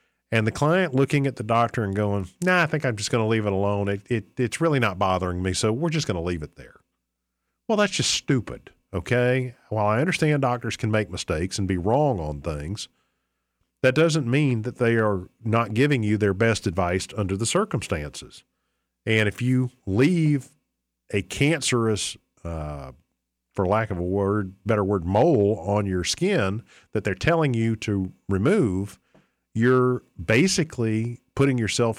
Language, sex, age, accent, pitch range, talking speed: English, male, 50-69, American, 95-125 Hz, 175 wpm